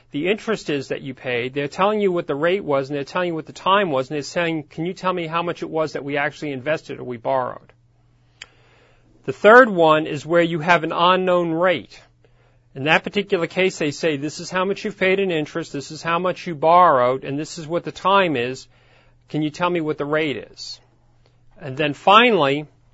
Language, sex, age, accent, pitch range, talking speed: English, male, 40-59, American, 135-180 Hz, 230 wpm